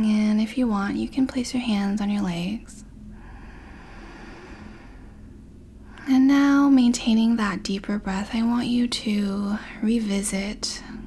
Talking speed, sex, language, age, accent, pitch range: 125 wpm, female, English, 10-29, American, 195-225 Hz